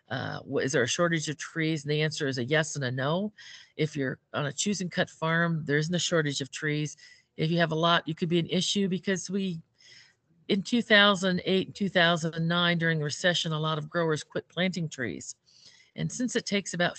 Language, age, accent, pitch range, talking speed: English, 50-69, American, 145-175 Hz, 215 wpm